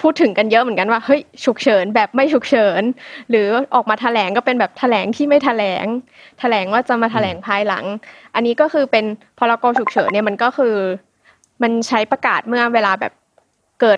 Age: 20-39